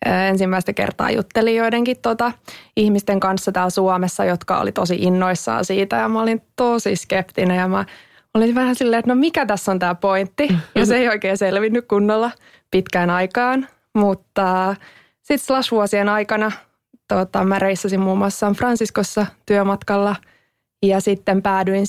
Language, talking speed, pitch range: English, 145 wpm, 195-225 Hz